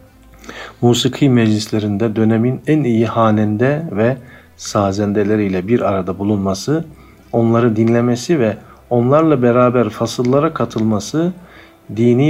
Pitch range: 105-125 Hz